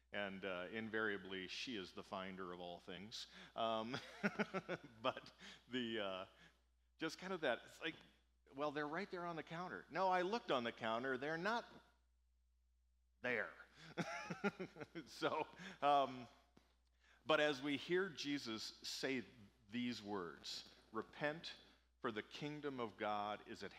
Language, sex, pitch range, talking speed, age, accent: English, male, 95-145 Hz, 135 wpm, 50-69, American